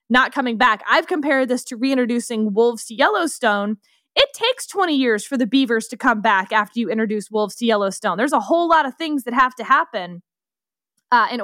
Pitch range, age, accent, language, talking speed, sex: 225-295 Hz, 20-39, American, English, 205 wpm, female